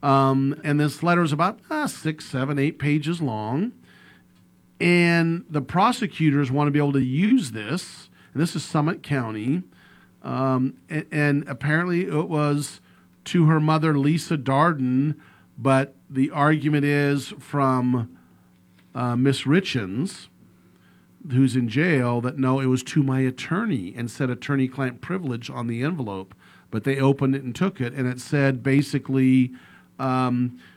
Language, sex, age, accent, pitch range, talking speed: English, male, 40-59, American, 120-150 Hz, 145 wpm